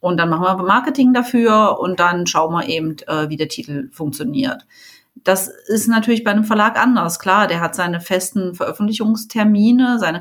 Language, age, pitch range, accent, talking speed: German, 30-49, 175-220 Hz, German, 175 wpm